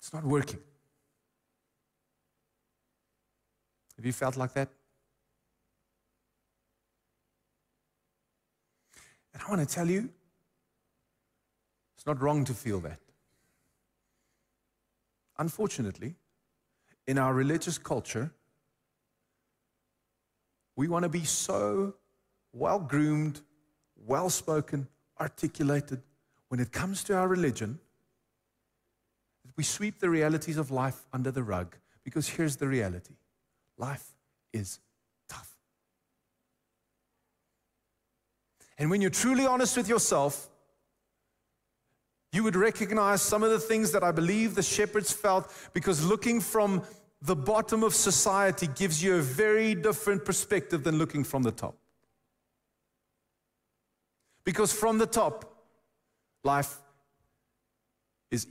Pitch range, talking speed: 115-190 Hz, 100 wpm